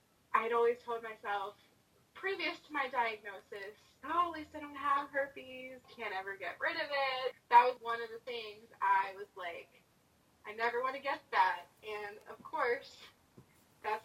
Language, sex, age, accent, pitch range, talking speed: English, female, 20-39, American, 210-280 Hz, 170 wpm